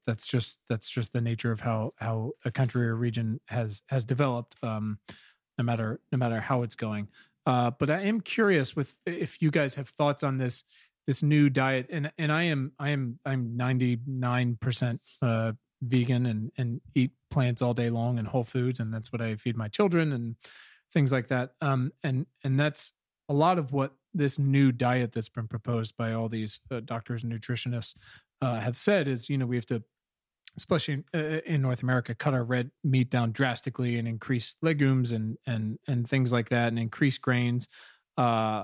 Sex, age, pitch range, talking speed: male, 30-49, 120-140 Hz, 190 wpm